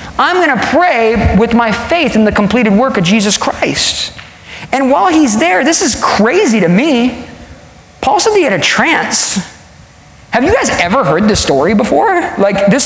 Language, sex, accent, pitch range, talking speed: English, male, American, 190-260 Hz, 180 wpm